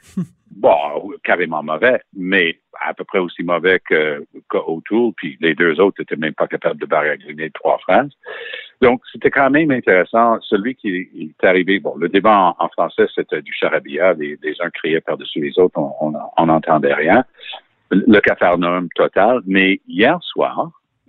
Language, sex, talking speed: French, male, 175 wpm